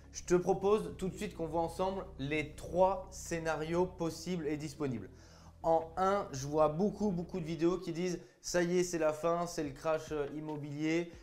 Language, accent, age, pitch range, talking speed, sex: French, French, 20-39, 145-185 Hz, 185 wpm, male